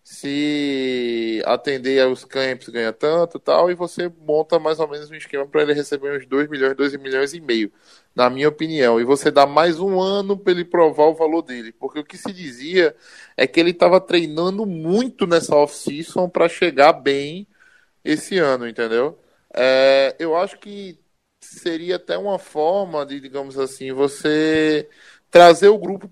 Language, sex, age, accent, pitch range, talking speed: Portuguese, male, 20-39, Brazilian, 140-175 Hz, 170 wpm